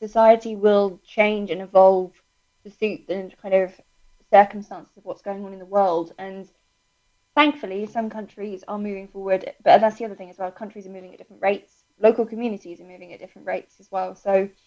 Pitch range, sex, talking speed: 195-225 Hz, female, 195 wpm